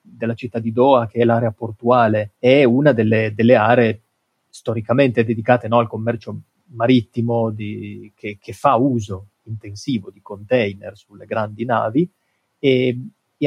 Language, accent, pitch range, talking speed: Italian, native, 115-130 Hz, 135 wpm